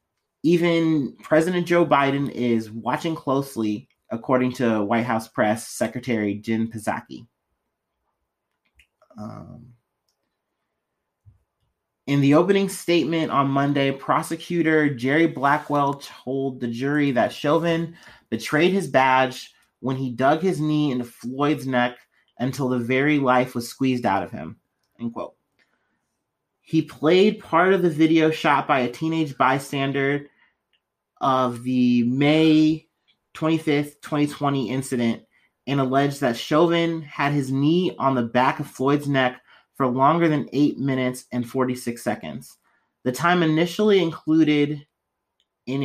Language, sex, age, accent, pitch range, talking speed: English, male, 30-49, American, 125-155 Hz, 125 wpm